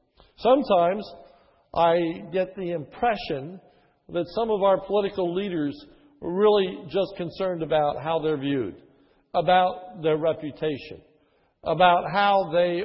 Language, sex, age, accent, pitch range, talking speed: English, male, 60-79, American, 160-195 Hz, 115 wpm